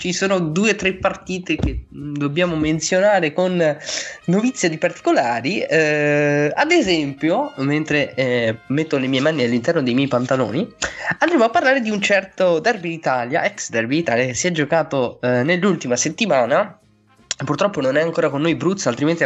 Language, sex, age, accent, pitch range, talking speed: Italian, male, 20-39, native, 125-185 Hz, 160 wpm